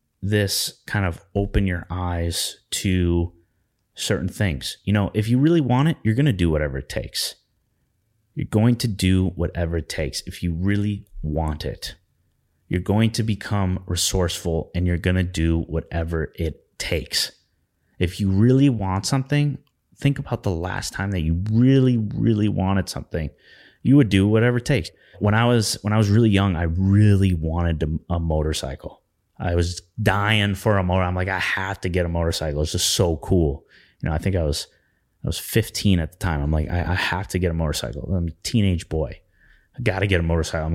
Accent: American